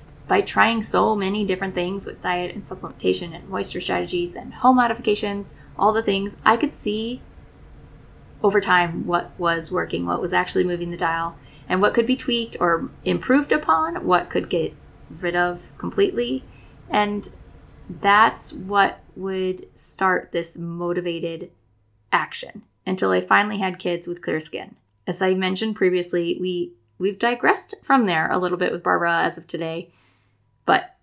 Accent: American